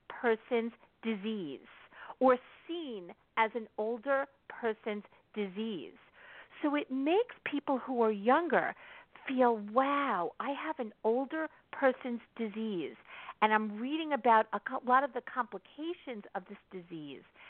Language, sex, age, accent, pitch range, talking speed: English, female, 50-69, American, 200-265 Hz, 125 wpm